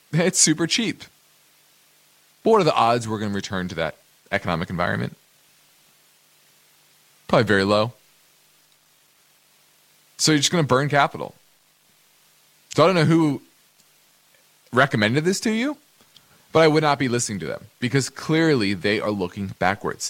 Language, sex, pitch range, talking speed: English, male, 105-140 Hz, 145 wpm